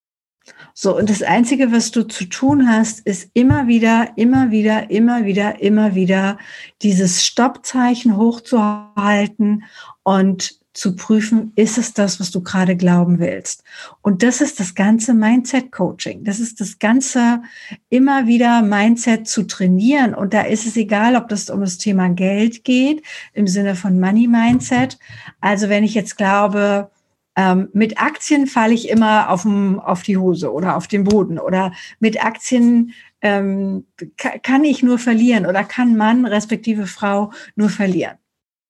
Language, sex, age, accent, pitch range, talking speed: German, female, 60-79, German, 200-235 Hz, 150 wpm